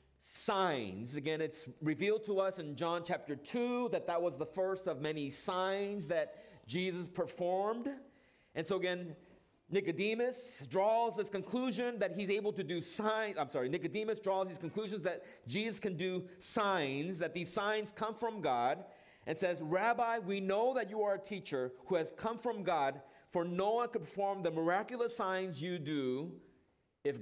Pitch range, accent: 170-220 Hz, American